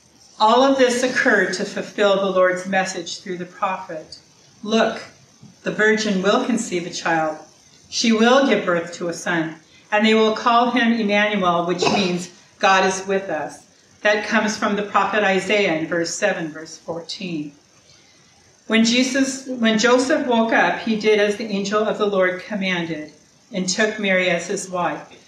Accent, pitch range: American, 180-215 Hz